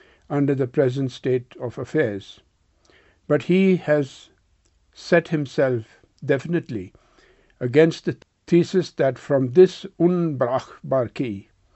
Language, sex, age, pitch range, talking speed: English, male, 60-79, 115-155 Hz, 95 wpm